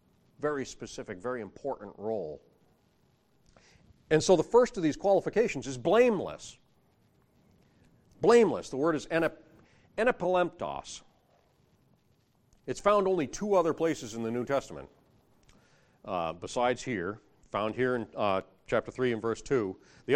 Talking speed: 125 wpm